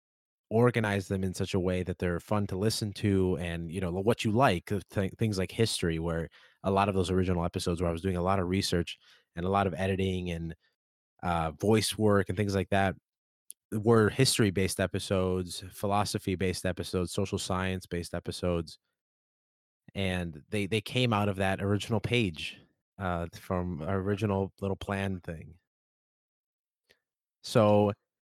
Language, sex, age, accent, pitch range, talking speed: English, male, 20-39, American, 90-110 Hz, 160 wpm